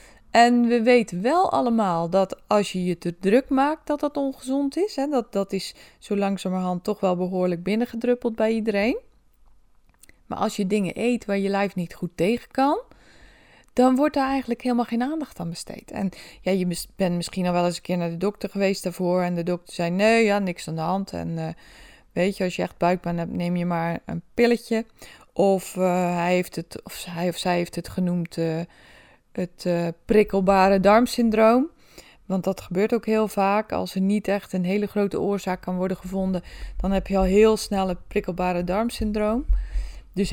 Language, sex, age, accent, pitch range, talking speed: Dutch, female, 20-39, Dutch, 180-215 Hz, 195 wpm